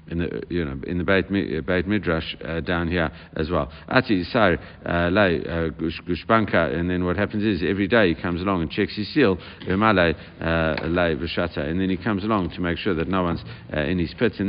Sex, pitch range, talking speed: male, 85-100 Hz, 180 wpm